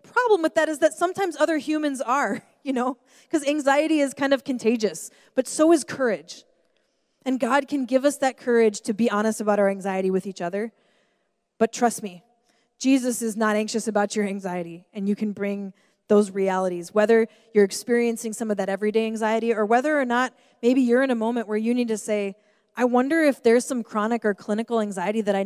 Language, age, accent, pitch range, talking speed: English, 20-39, American, 215-270 Hz, 205 wpm